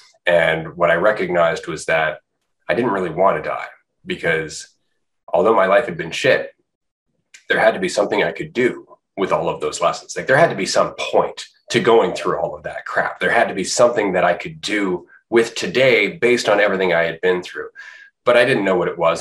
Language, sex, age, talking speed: English, male, 30-49, 220 wpm